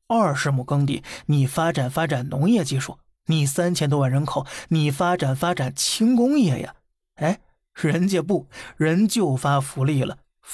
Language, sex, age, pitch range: Chinese, male, 20-39, 140-175 Hz